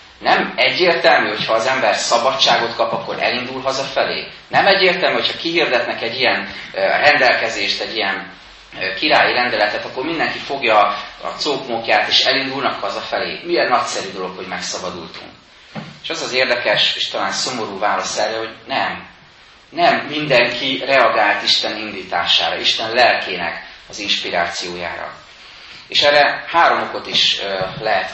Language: Hungarian